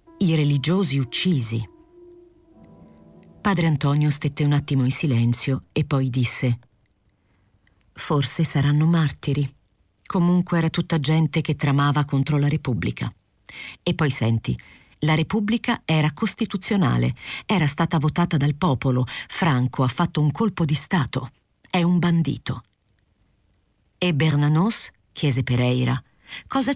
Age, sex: 50-69, female